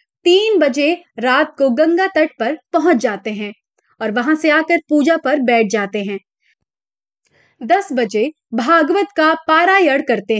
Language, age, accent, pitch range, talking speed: Hindi, 30-49, native, 240-340 Hz, 145 wpm